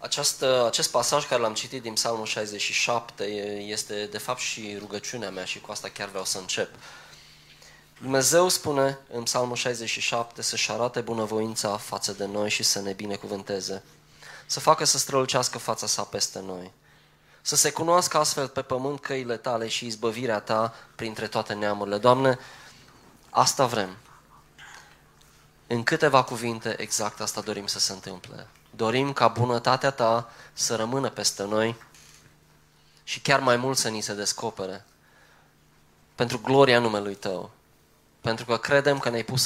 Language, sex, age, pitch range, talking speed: Romanian, male, 20-39, 105-135 Hz, 145 wpm